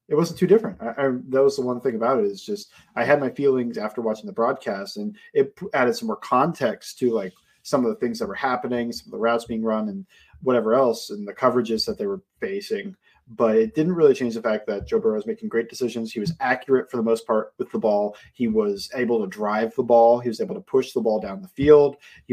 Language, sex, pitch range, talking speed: English, male, 115-170 Hz, 255 wpm